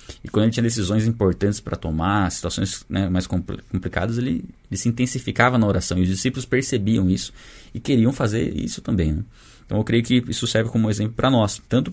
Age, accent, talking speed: 20-39, Brazilian, 200 wpm